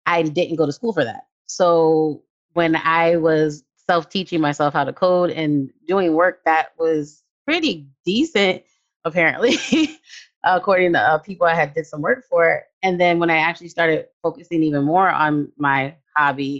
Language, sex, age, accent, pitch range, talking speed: English, female, 30-49, American, 145-185 Hz, 165 wpm